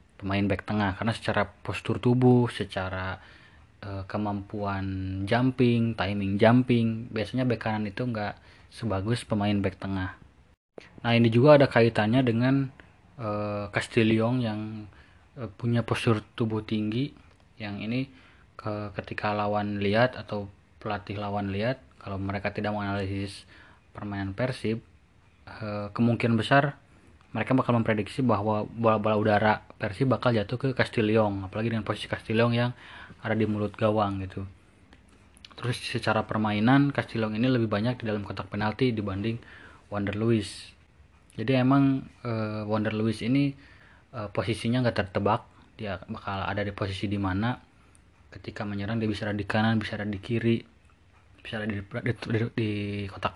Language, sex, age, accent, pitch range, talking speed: Indonesian, male, 20-39, native, 100-115 Hz, 135 wpm